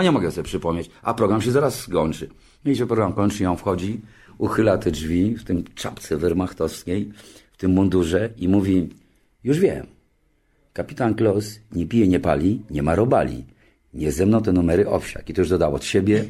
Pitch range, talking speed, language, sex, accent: 95-125 Hz, 190 wpm, Polish, male, native